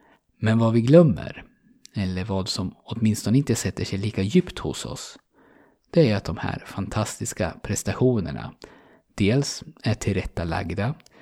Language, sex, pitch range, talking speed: Swedish, male, 95-125 Hz, 135 wpm